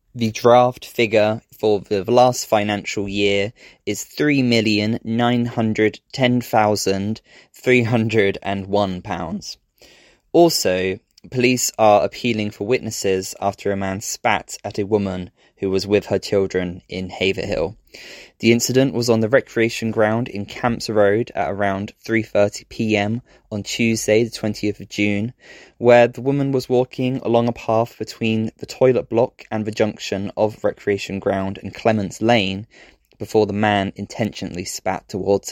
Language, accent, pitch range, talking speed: English, British, 100-120 Hz, 130 wpm